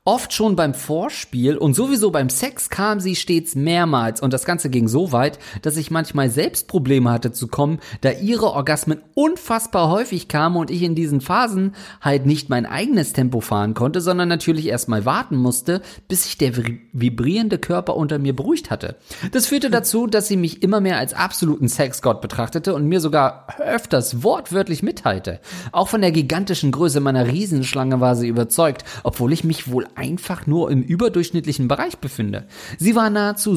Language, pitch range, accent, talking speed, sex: German, 130-190 Hz, German, 175 wpm, male